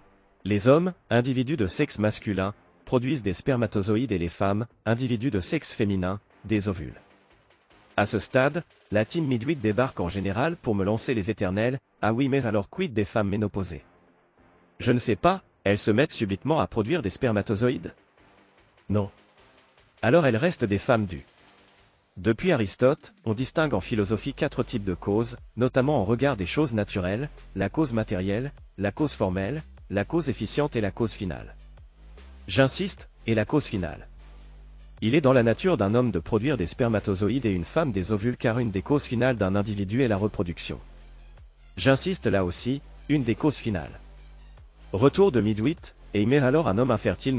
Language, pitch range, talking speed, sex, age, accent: French, 100-135 Hz, 175 wpm, male, 40-59, French